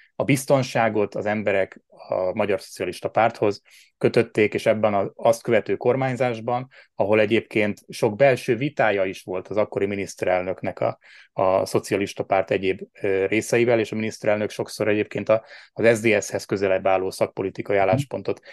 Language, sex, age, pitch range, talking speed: Hungarian, male, 30-49, 95-120 Hz, 145 wpm